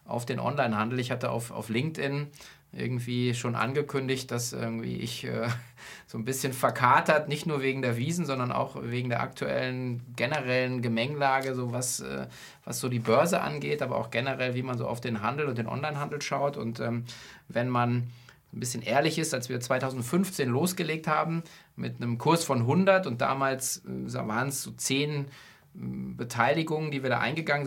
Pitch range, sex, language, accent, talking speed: 120-145 Hz, male, German, German, 170 wpm